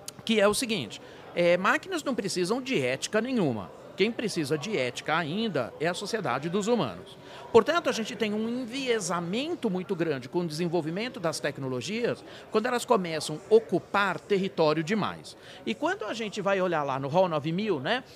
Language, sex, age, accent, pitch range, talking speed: Portuguese, male, 50-69, Brazilian, 160-220 Hz, 170 wpm